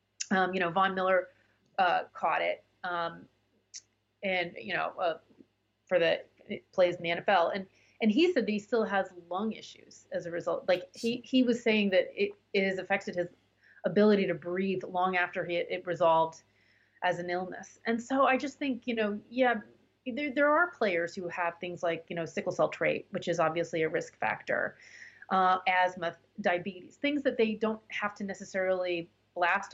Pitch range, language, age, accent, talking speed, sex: 175-235 Hz, English, 30-49, American, 185 wpm, female